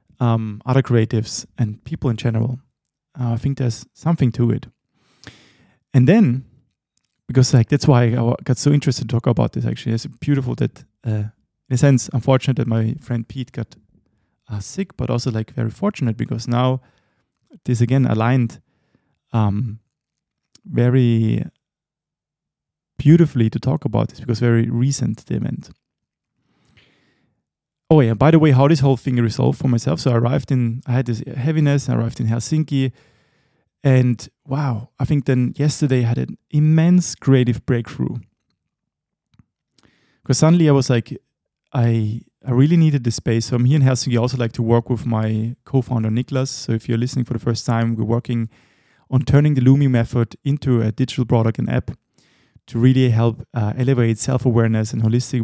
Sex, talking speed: male, 170 wpm